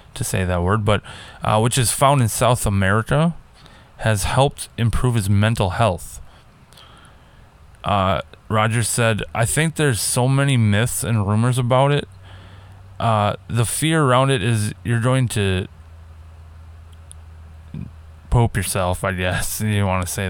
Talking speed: 140 wpm